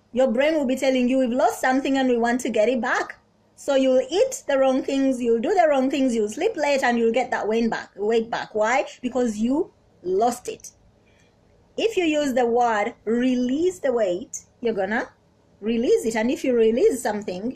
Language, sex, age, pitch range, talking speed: English, female, 20-39, 225-270 Hz, 200 wpm